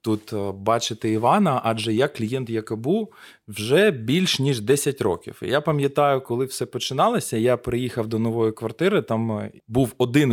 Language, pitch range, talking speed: Ukrainian, 110-145 Hz, 145 wpm